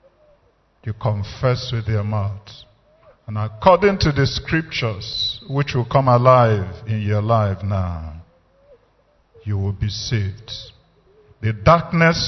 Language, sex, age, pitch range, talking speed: English, male, 50-69, 105-125 Hz, 115 wpm